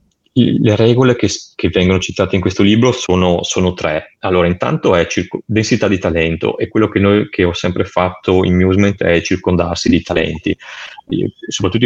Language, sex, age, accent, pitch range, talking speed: Italian, male, 30-49, native, 85-95 Hz, 160 wpm